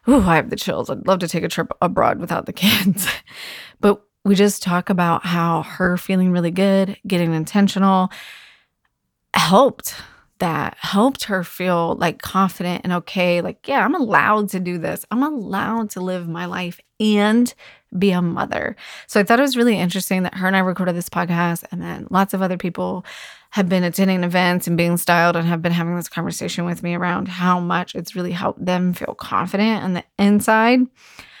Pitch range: 175-205 Hz